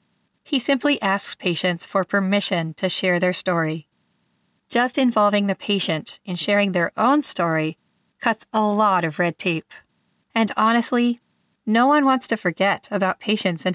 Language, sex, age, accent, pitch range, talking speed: English, female, 40-59, American, 180-220 Hz, 155 wpm